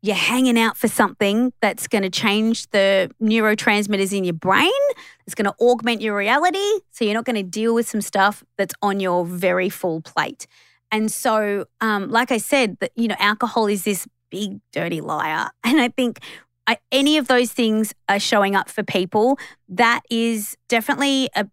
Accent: Australian